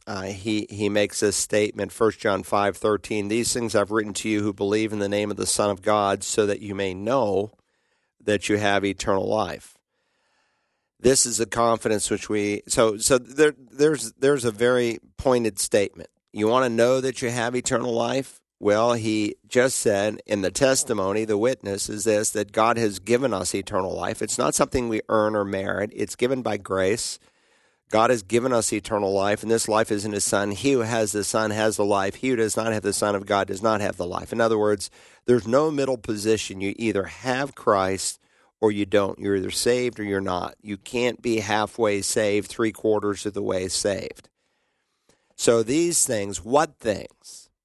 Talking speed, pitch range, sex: 200 wpm, 100-120 Hz, male